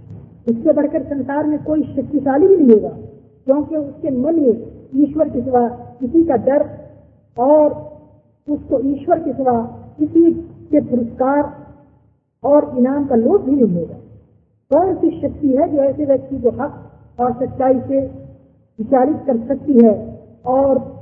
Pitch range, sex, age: 250-300 Hz, female, 50-69